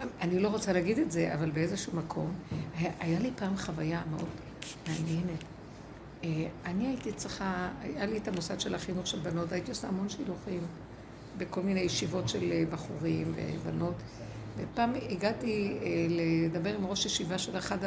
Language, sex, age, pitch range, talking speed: Hebrew, female, 60-79, 165-225 Hz, 150 wpm